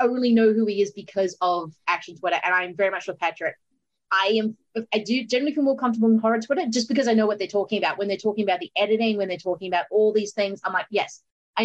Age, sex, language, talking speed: 30-49, female, English, 270 wpm